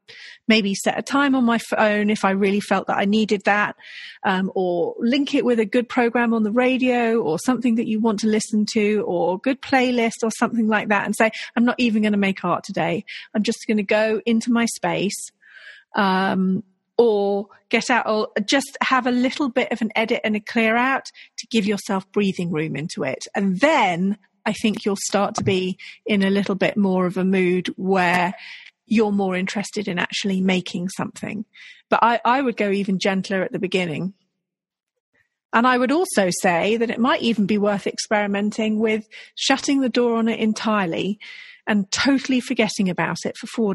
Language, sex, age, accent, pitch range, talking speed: English, female, 40-59, British, 195-245 Hz, 195 wpm